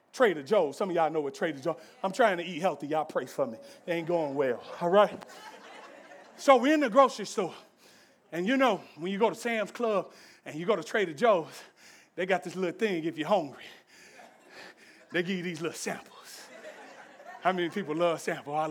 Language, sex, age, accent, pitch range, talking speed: English, male, 30-49, American, 165-225 Hz, 210 wpm